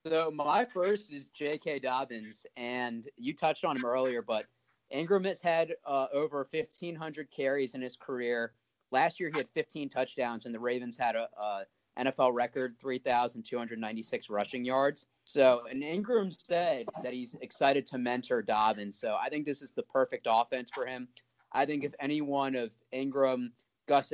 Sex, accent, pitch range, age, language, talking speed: male, American, 115-145 Hz, 30-49, English, 170 wpm